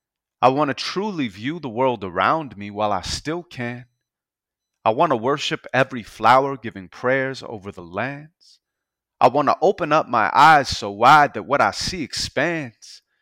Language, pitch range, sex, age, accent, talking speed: English, 105-145 Hz, male, 30-49, American, 160 wpm